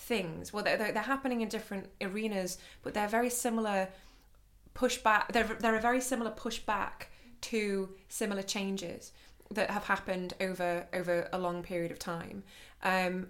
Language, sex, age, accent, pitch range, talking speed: English, female, 20-39, British, 175-210 Hz, 150 wpm